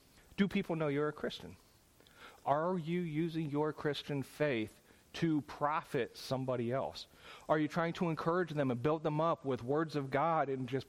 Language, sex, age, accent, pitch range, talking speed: English, male, 40-59, American, 130-165 Hz, 175 wpm